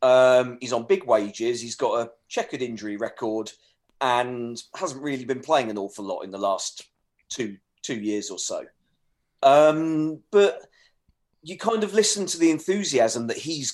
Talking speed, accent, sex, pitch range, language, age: 165 wpm, British, male, 115-145 Hz, English, 40-59